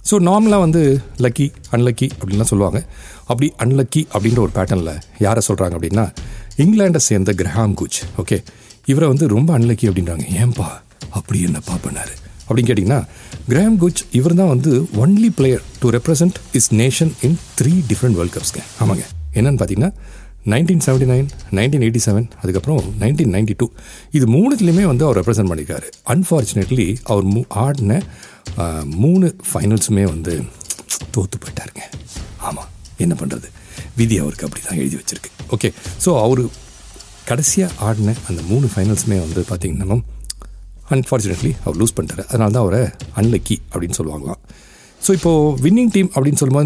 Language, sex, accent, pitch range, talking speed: Tamil, male, native, 100-145 Hz, 140 wpm